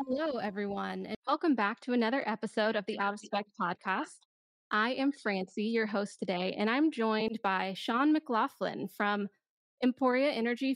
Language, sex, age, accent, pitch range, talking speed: English, female, 20-39, American, 195-235 Hz, 160 wpm